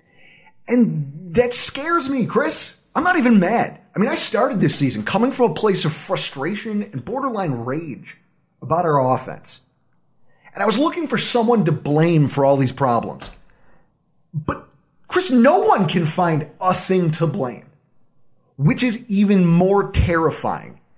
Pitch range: 150-225 Hz